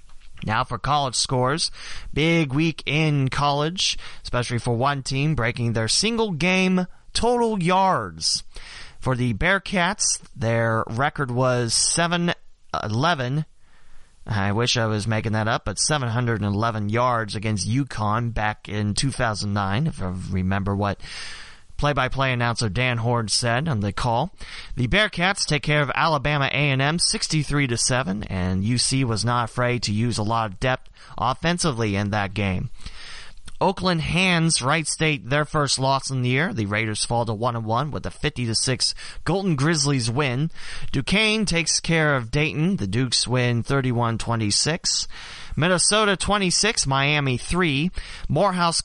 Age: 30-49